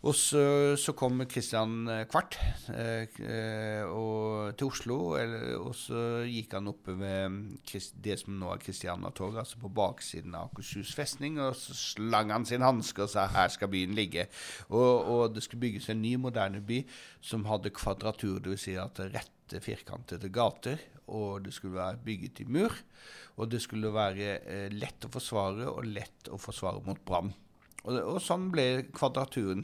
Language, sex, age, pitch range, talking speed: English, male, 60-79, 95-120 Hz, 160 wpm